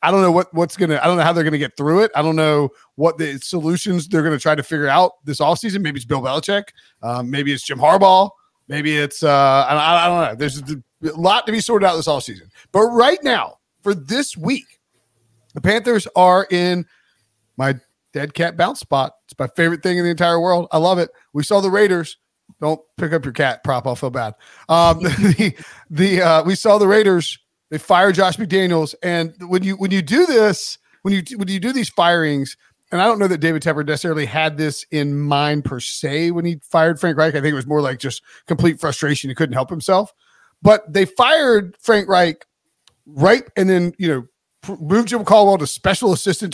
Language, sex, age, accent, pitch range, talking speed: English, male, 40-59, American, 150-190 Hz, 220 wpm